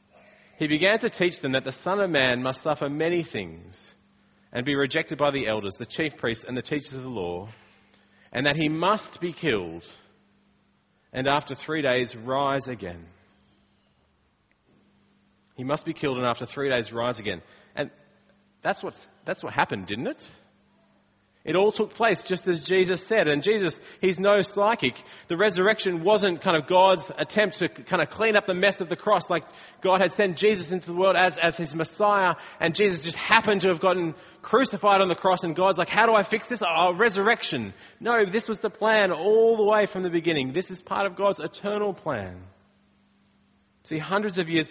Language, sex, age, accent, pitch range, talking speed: English, male, 30-49, Australian, 130-195 Hz, 195 wpm